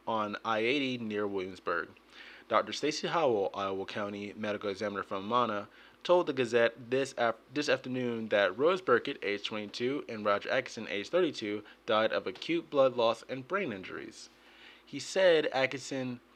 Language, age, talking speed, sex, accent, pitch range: English, 20-39, 150 wpm, male, American, 105-130 Hz